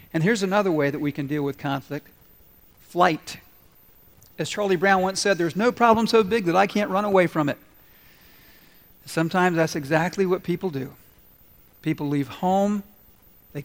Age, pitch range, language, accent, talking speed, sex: 50-69, 150-185 Hz, English, American, 165 wpm, male